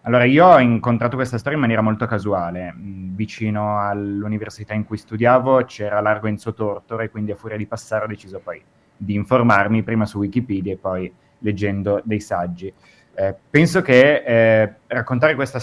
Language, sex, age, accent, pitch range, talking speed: Italian, male, 30-49, native, 110-130 Hz, 170 wpm